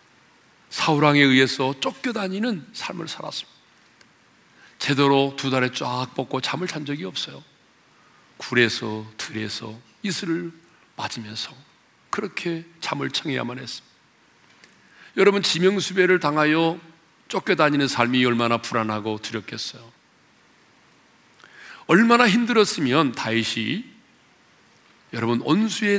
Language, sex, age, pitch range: Korean, male, 40-59, 115-165 Hz